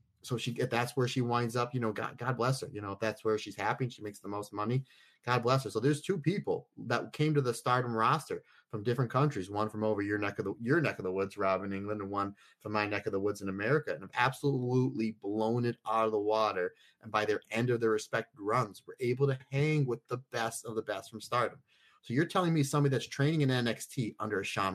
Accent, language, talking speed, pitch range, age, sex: American, English, 265 wpm, 100-125 Hz, 30-49, male